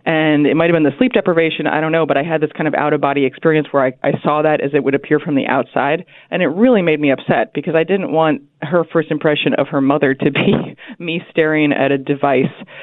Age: 20-39